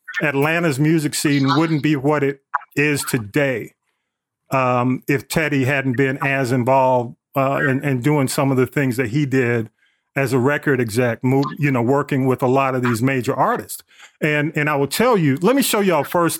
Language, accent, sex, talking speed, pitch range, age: English, American, male, 190 wpm, 135-170 Hz, 40-59